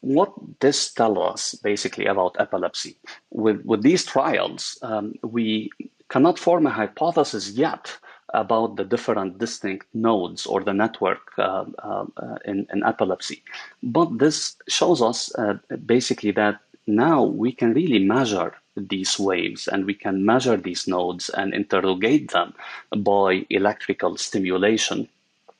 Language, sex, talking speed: English, male, 135 wpm